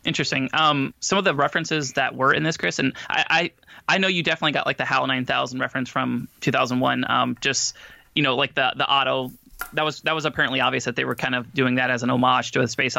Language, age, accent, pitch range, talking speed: English, 20-39, American, 130-155 Hz, 245 wpm